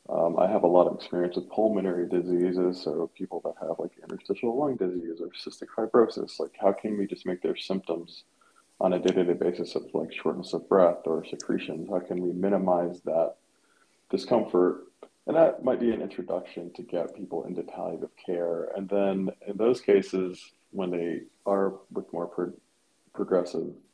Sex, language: male, English